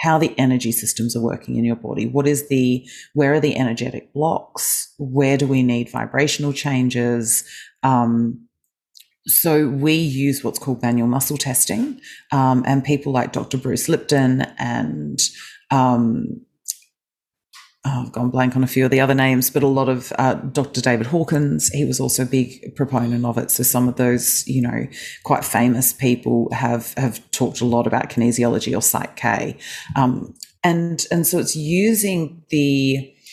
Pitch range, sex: 120-145 Hz, female